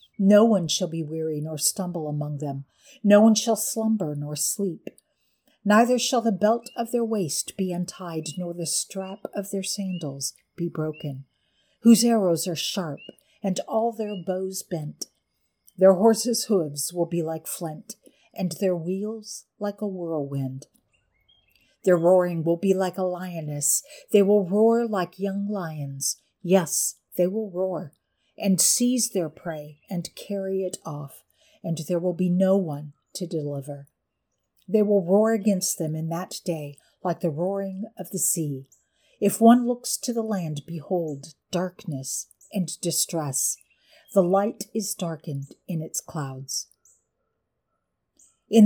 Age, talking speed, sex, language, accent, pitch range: 50-69, 145 wpm, female, English, American, 160-210 Hz